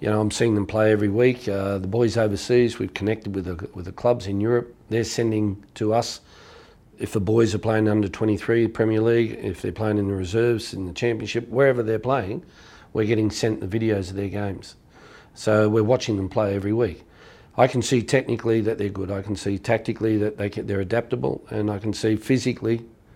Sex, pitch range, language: male, 100-115 Hz, English